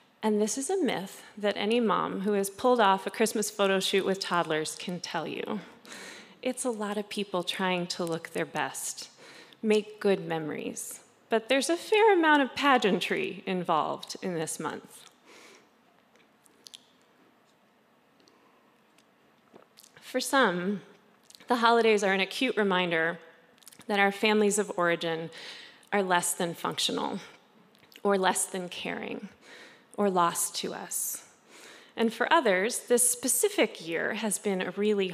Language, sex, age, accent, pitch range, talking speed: English, female, 30-49, American, 190-245 Hz, 135 wpm